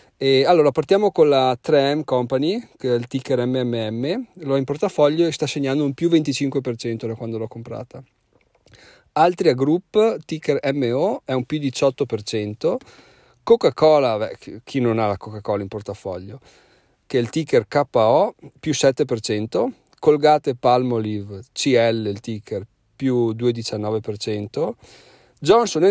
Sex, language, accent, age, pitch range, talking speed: male, Italian, native, 40-59, 115-155 Hz, 135 wpm